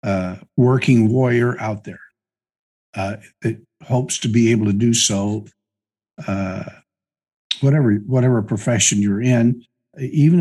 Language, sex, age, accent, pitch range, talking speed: English, male, 60-79, American, 110-140 Hz, 120 wpm